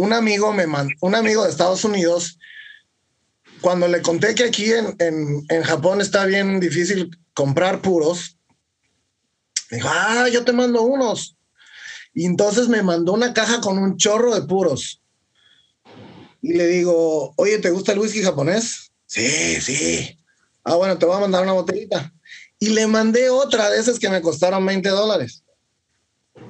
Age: 30-49